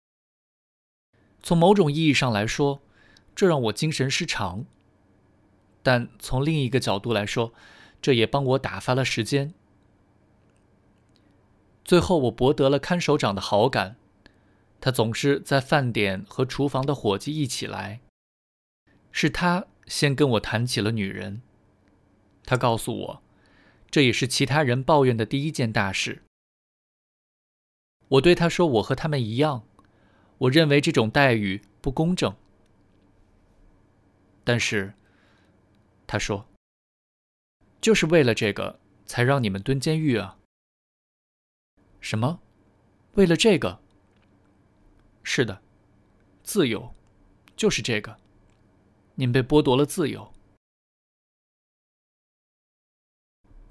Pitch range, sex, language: 100-140 Hz, male, Chinese